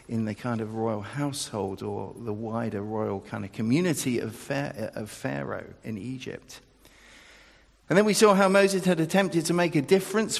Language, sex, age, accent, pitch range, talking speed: English, male, 50-69, British, 125-170 Hz, 165 wpm